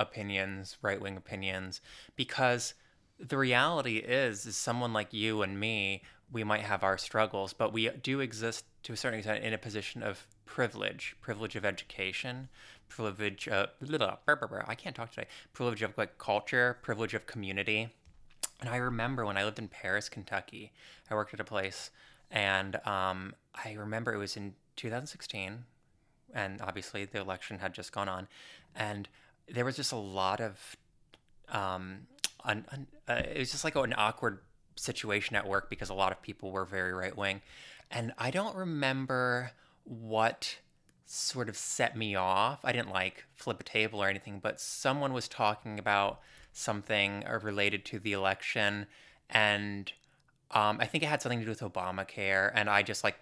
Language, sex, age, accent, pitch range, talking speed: English, male, 20-39, American, 100-120 Hz, 170 wpm